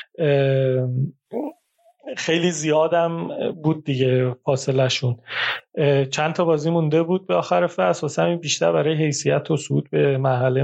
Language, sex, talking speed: Persian, male, 125 wpm